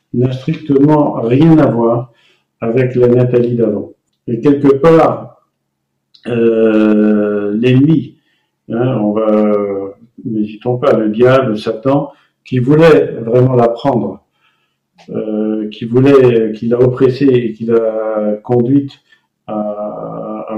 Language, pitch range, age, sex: French, 115-140 Hz, 50-69, male